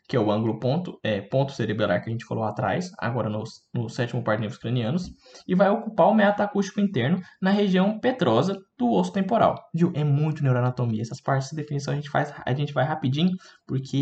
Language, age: Portuguese, 10-29